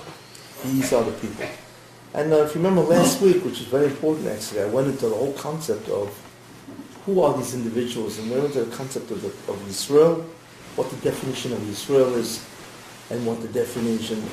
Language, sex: English, male